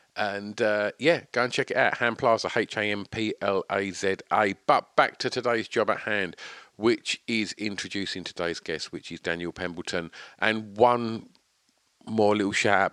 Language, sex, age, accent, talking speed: English, male, 50-69, British, 150 wpm